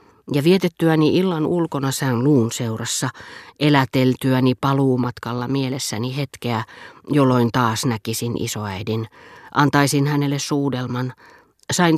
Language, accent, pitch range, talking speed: Finnish, native, 120-145 Hz, 95 wpm